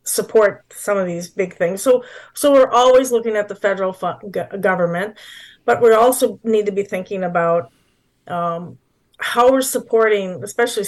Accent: American